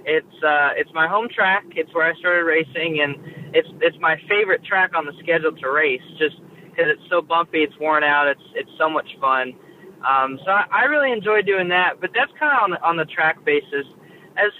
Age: 20-39